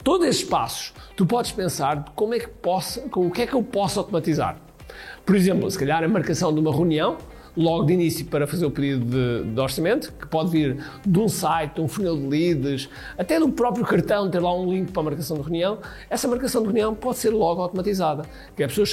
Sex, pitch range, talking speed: male, 155-210 Hz, 230 wpm